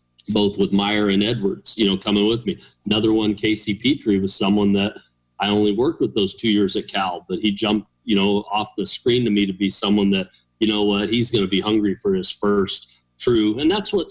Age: 40-59